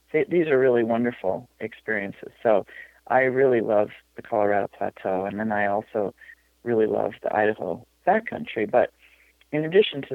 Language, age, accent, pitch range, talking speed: English, 40-59, American, 115-130 Hz, 150 wpm